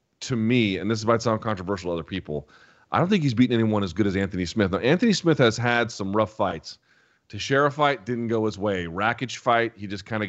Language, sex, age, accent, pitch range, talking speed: English, male, 30-49, American, 100-125 Hz, 250 wpm